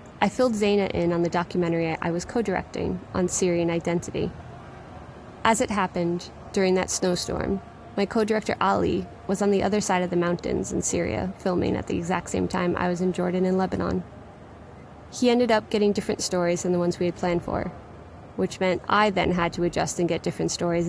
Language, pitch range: English, 175-205 Hz